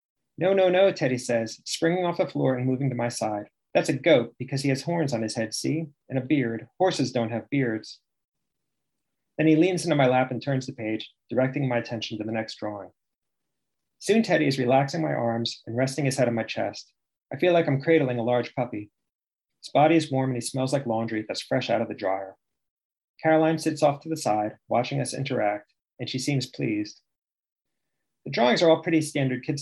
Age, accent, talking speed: 30-49, American, 215 wpm